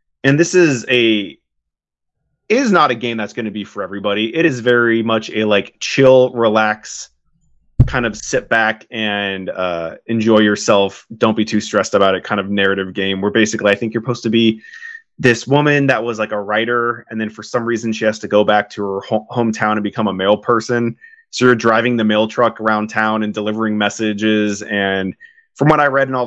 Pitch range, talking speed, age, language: 105-120 Hz, 210 wpm, 20-39, English